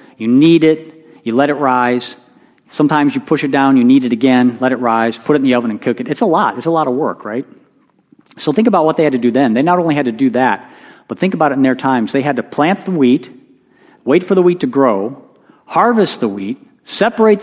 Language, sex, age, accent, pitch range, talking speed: English, male, 40-59, American, 130-170 Hz, 260 wpm